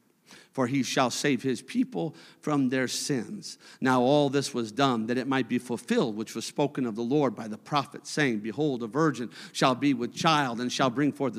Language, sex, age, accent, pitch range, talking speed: English, male, 50-69, American, 165-250 Hz, 210 wpm